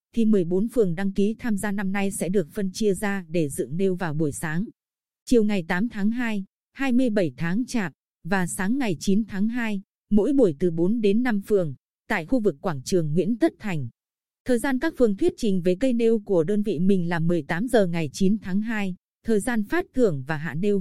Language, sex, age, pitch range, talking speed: Vietnamese, female, 20-39, 185-230 Hz, 215 wpm